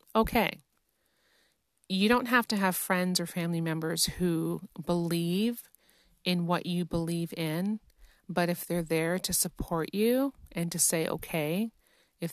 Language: English